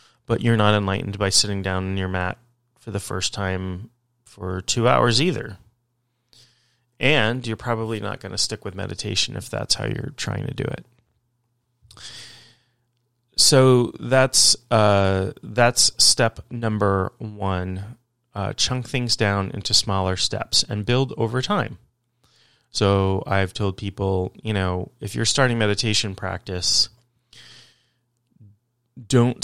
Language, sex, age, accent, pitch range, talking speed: English, male, 30-49, American, 100-120 Hz, 135 wpm